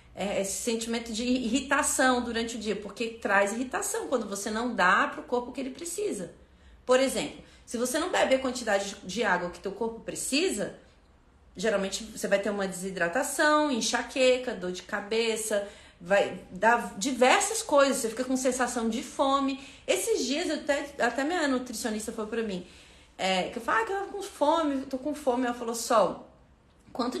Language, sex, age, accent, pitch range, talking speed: Portuguese, female, 30-49, Brazilian, 215-285 Hz, 180 wpm